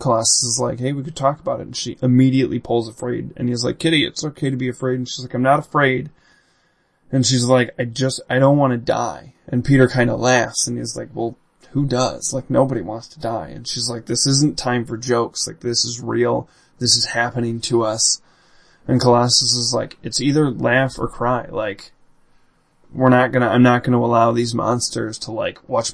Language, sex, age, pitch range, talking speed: English, male, 20-39, 120-140 Hz, 215 wpm